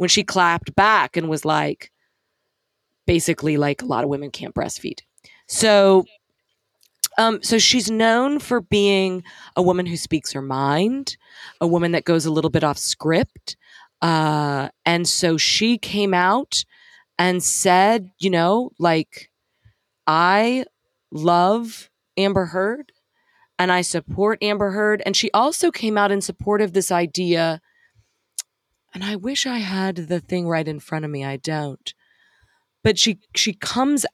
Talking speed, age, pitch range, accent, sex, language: 150 wpm, 30-49, 165-210 Hz, American, female, English